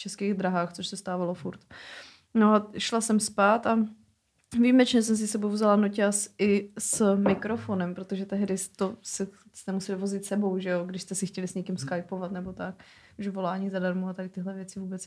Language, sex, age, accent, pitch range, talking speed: Czech, female, 20-39, native, 190-225 Hz, 190 wpm